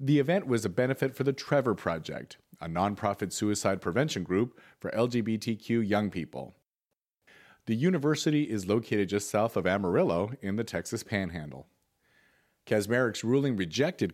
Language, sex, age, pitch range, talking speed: English, male, 40-59, 100-125 Hz, 140 wpm